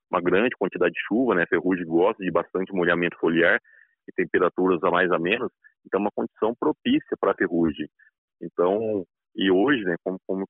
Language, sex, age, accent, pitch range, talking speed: Portuguese, male, 30-49, Brazilian, 95-135 Hz, 175 wpm